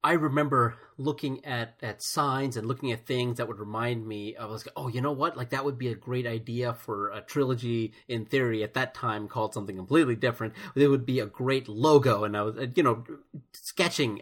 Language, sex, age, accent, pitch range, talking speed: English, male, 30-49, American, 115-160 Hz, 210 wpm